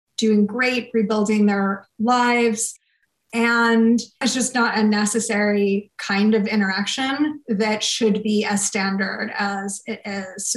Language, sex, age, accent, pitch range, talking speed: English, female, 30-49, American, 215-255 Hz, 125 wpm